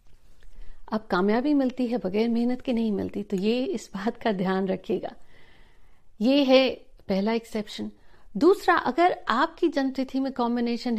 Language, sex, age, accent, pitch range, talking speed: Hindi, female, 50-69, native, 210-255 Hz, 140 wpm